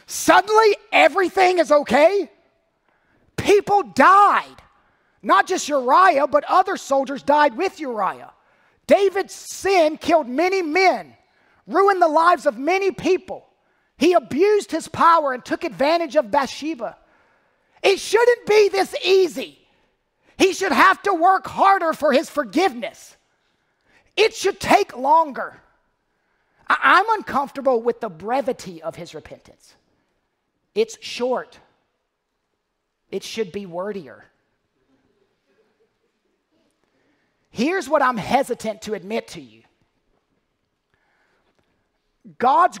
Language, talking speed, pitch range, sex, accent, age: English, 105 wpm, 225-365 Hz, male, American, 40-59